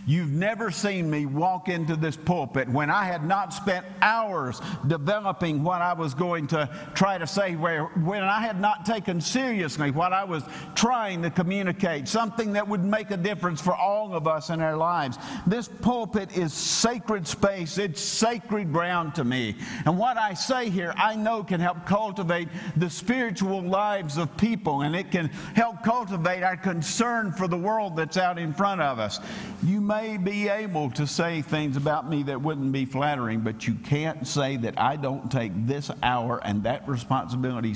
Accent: American